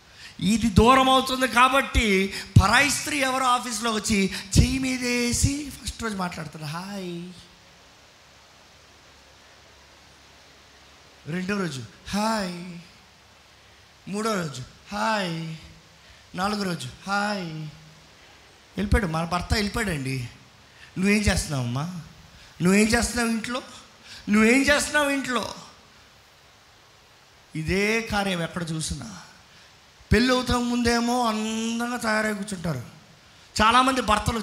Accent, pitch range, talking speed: native, 160-225 Hz, 85 wpm